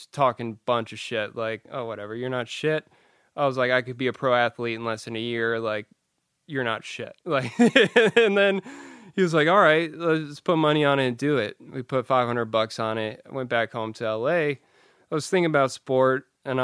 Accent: American